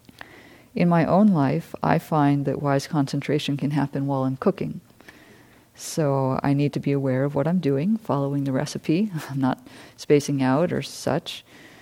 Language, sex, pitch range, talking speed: English, female, 130-155 Hz, 170 wpm